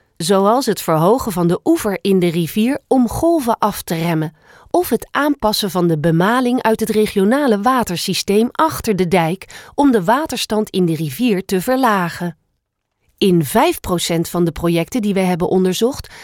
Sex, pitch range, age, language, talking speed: female, 175-245 Hz, 40-59, Dutch, 165 wpm